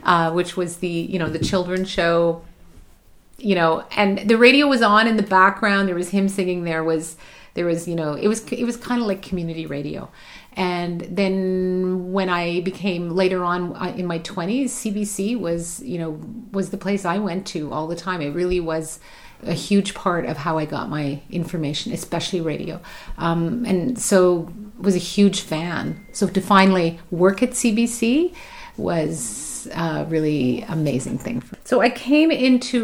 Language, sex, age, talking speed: English, female, 30-49, 180 wpm